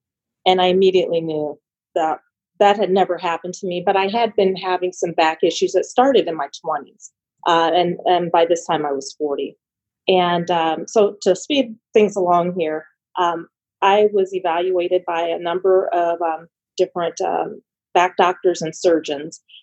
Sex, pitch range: female, 165-195 Hz